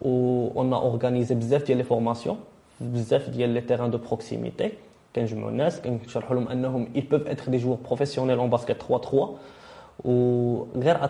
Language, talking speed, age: French, 140 wpm, 20-39